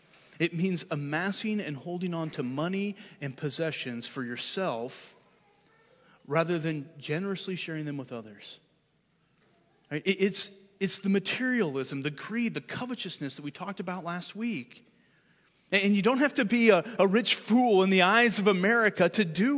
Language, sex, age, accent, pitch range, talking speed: English, male, 30-49, American, 160-215 Hz, 145 wpm